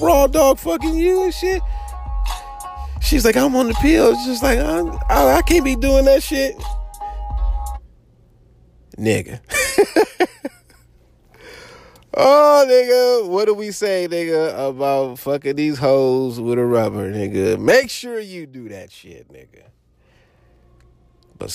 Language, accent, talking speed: English, American, 130 wpm